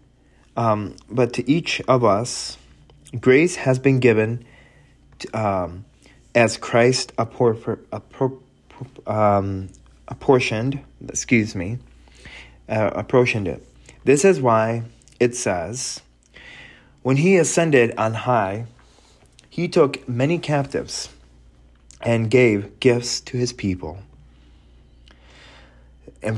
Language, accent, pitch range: English, American, 95-130 Hz